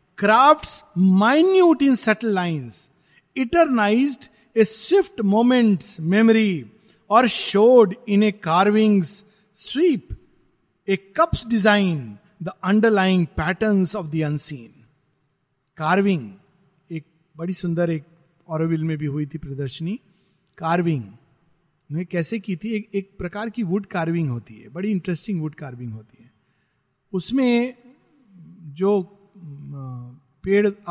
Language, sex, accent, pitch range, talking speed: Hindi, male, native, 155-215 Hz, 115 wpm